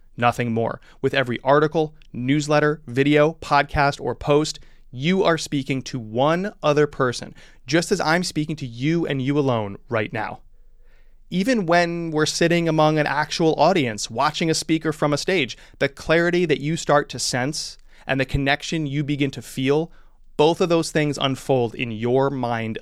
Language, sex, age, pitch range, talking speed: English, male, 30-49, 125-160 Hz, 170 wpm